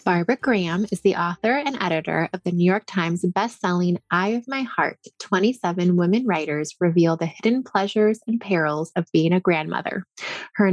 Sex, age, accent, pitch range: female, 20-39, American, 175-220 Hz